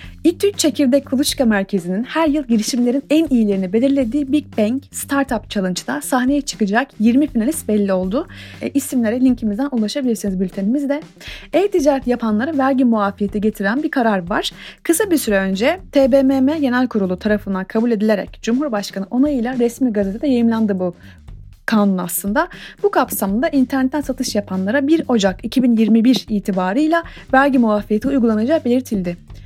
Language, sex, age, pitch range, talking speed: Turkish, female, 30-49, 210-280 Hz, 130 wpm